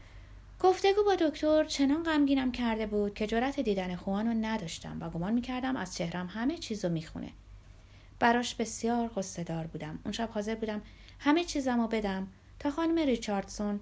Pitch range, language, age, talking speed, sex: 165-255 Hz, Persian, 30-49, 150 wpm, female